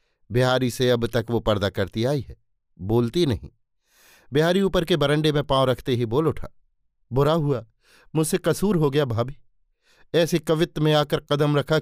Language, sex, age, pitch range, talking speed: Hindi, male, 50-69, 120-155 Hz, 175 wpm